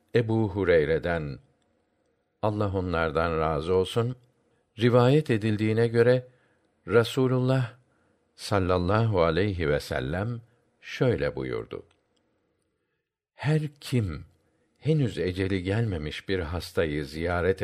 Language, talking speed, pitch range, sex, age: Turkish, 80 wpm, 95-125 Hz, male, 50-69